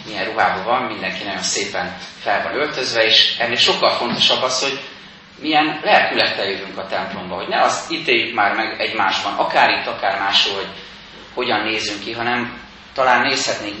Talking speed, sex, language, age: 165 wpm, male, Hungarian, 30-49